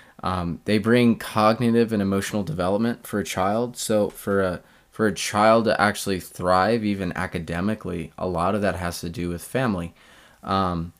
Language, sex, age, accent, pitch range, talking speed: English, male, 20-39, American, 90-110 Hz, 170 wpm